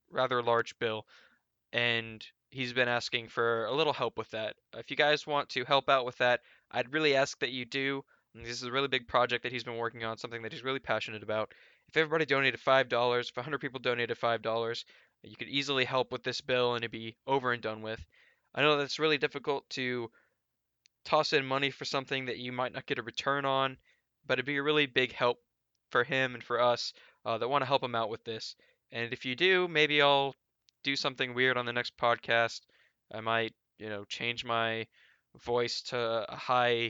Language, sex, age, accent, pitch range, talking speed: English, male, 10-29, American, 115-135 Hz, 215 wpm